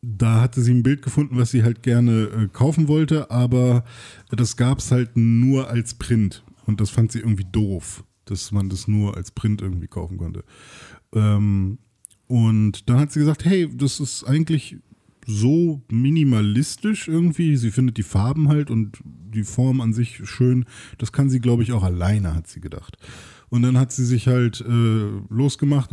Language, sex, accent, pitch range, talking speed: German, male, German, 105-125 Hz, 175 wpm